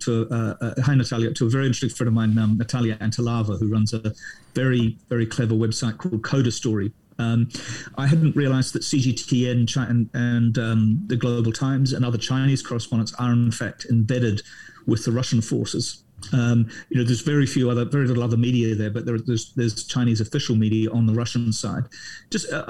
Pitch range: 115-135 Hz